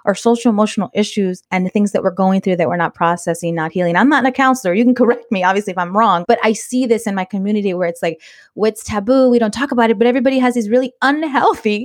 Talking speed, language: 265 wpm, English